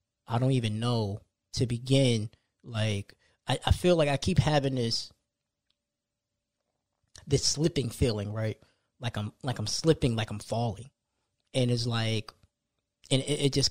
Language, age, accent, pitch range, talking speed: English, 20-39, American, 115-140 Hz, 150 wpm